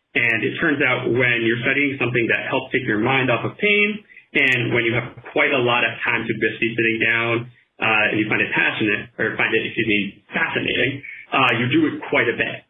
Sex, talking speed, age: male, 225 wpm, 30-49